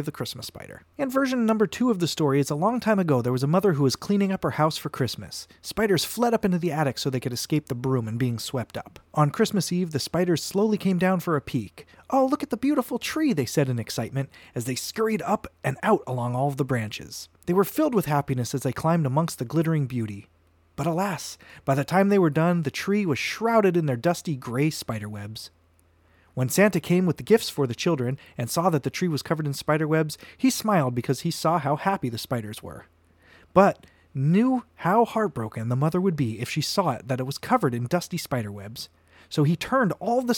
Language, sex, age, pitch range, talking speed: English, male, 30-49, 130-195 Hz, 235 wpm